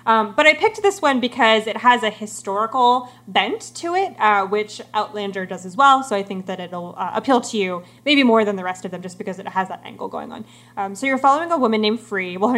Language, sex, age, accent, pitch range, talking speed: English, female, 20-39, American, 195-230 Hz, 260 wpm